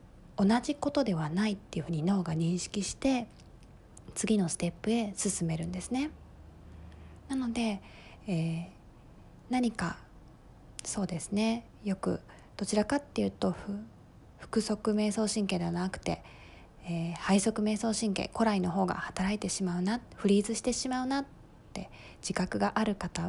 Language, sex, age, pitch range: Japanese, female, 20-39, 175-225 Hz